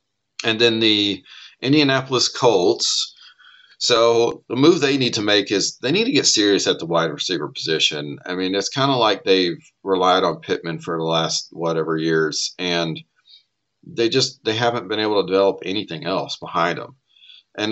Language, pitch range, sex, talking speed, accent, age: English, 85-115 Hz, male, 175 wpm, American, 40-59